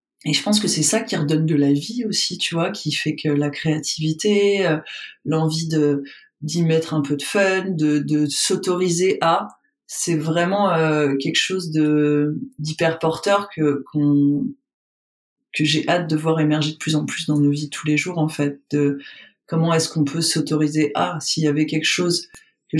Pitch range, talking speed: 150-190 Hz, 195 wpm